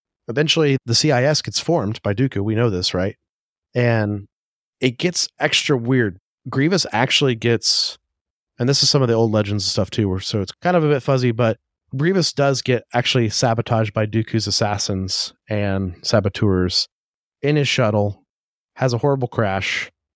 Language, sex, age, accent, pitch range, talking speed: English, male, 30-49, American, 105-130 Hz, 160 wpm